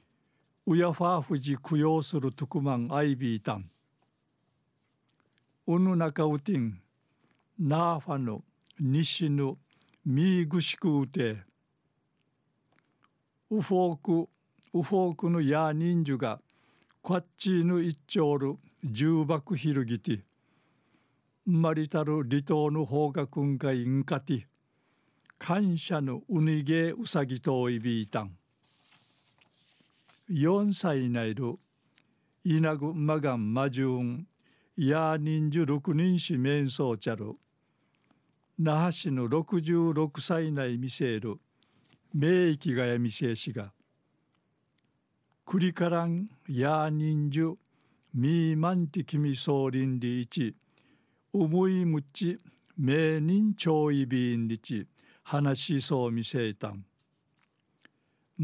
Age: 60-79